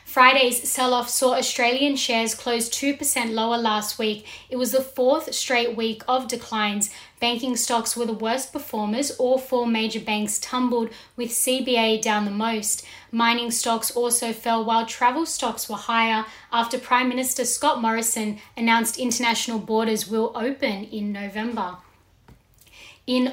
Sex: female